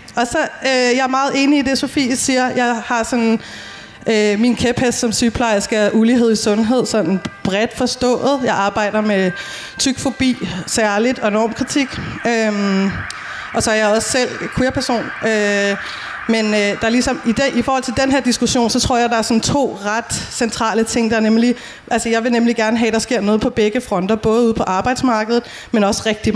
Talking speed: 200 wpm